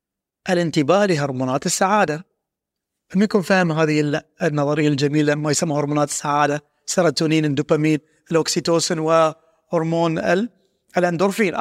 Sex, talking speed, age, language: male, 90 wpm, 30-49, Arabic